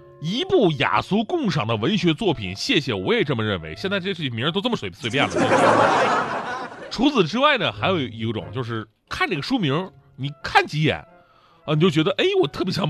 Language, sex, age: Chinese, male, 30-49